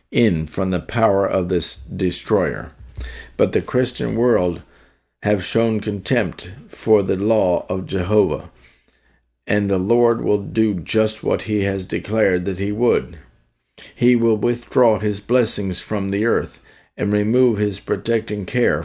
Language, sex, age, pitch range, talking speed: English, male, 50-69, 90-110 Hz, 145 wpm